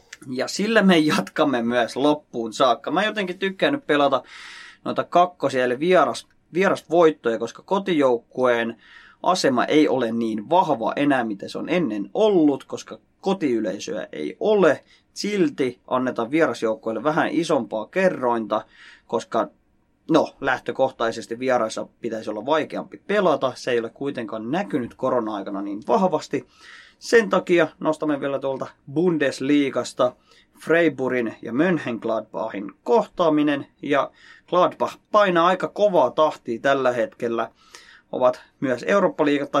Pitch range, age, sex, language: 120-160 Hz, 20-39, male, Finnish